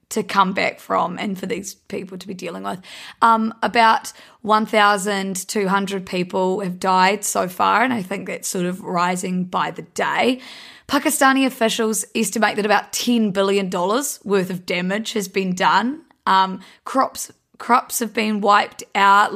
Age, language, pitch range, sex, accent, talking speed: 20-39, English, 195-230 Hz, female, Australian, 155 wpm